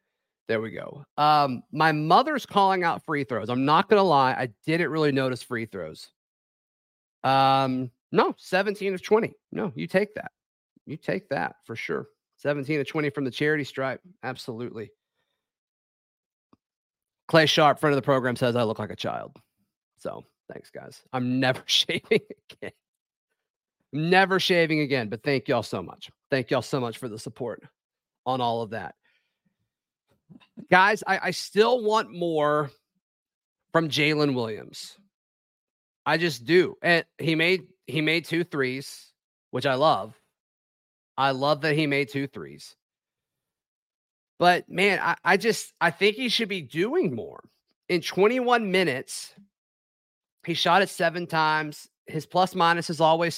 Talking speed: 150 wpm